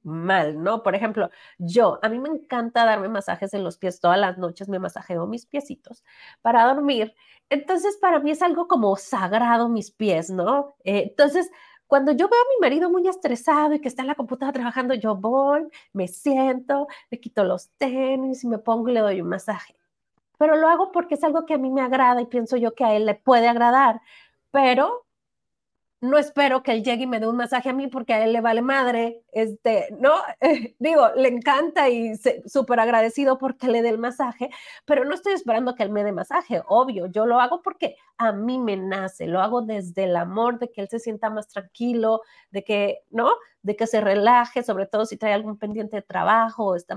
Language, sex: Spanish, female